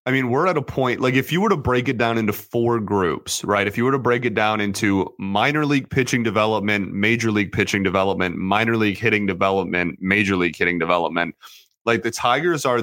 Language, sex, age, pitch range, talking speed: English, male, 30-49, 100-120 Hz, 215 wpm